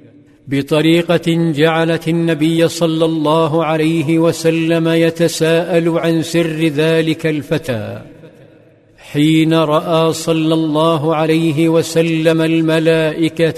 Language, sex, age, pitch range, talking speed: Arabic, male, 50-69, 155-165 Hz, 85 wpm